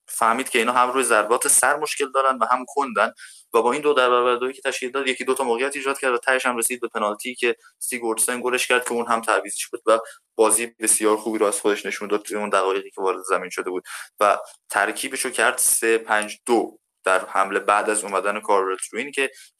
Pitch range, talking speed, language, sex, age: 115-150 Hz, 220 wpm, Persian, male, 20-39